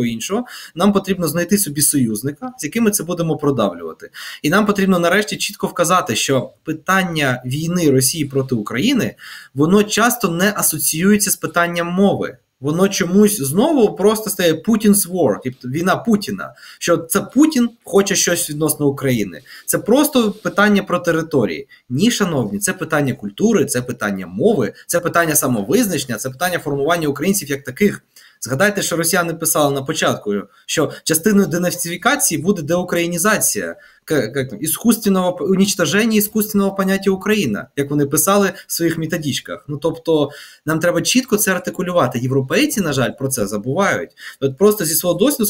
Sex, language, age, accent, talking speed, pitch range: male, Ukrainian, 20-39, native, 145 wpm, 145-200 Hz